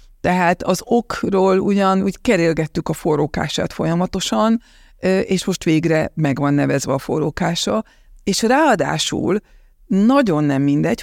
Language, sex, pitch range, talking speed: Hungarian, female, 155-195 Hz, 110 wpm